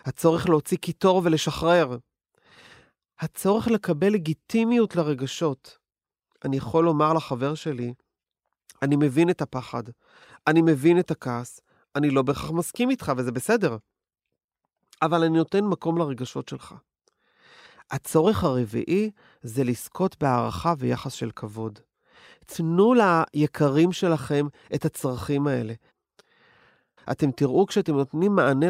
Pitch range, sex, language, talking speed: 140-185 Hz, male, Hebrew, 110 wpm